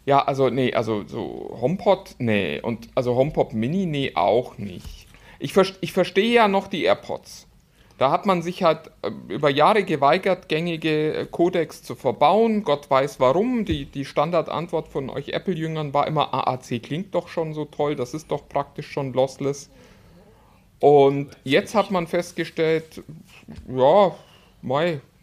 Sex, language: male, German